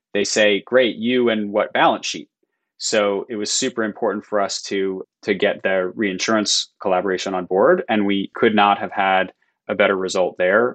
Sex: male